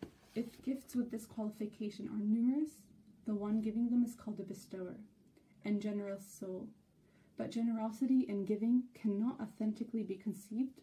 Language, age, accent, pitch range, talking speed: English, 20-39, American, 200-230 Hz, 145 wpm